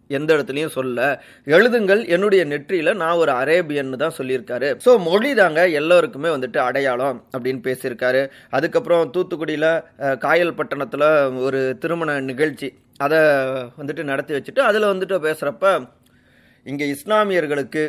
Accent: native